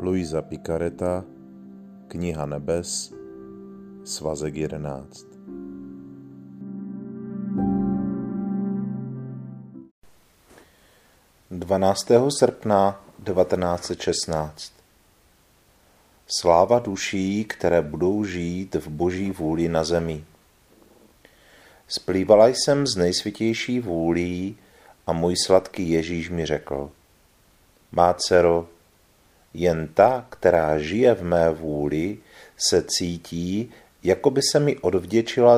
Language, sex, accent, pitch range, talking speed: Czech, male, native, 75-100 Hz, 80 wpm